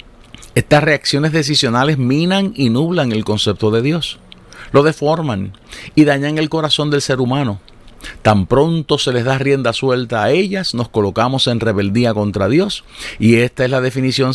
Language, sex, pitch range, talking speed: Spanish, male, 115-150 Hz, 165 wpm